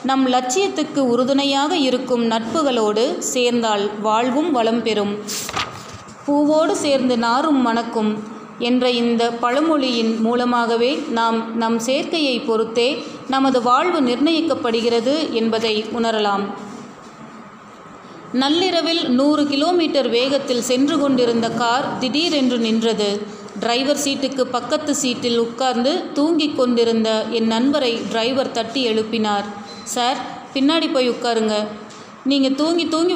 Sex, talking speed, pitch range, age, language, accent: female, 100 wpm, 225-275 Hz, 30-49, Tamil, native